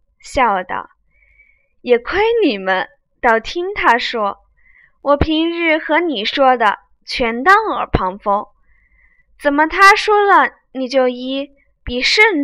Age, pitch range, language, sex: 20-39, 210-315 Hz, Chinese, female